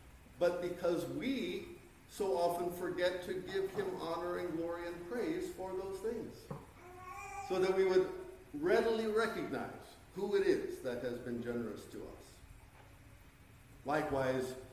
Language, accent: English, American